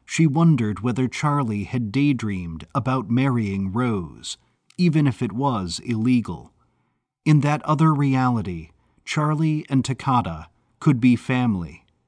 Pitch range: 105-150 Hz